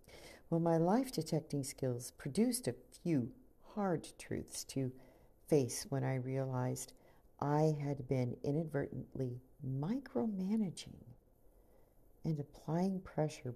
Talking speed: 95 wpm